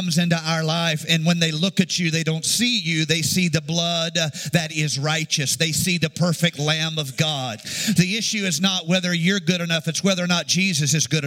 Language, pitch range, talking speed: English, 180-230 Hz, 225 wpm